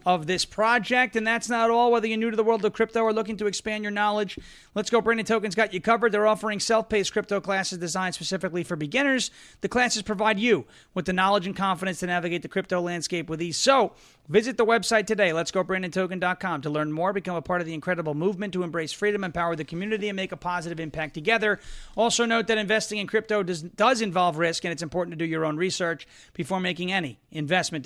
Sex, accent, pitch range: male, American, 175-215 Hz